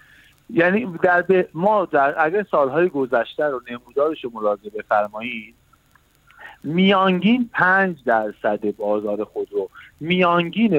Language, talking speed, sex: Persian, 95 wpm, male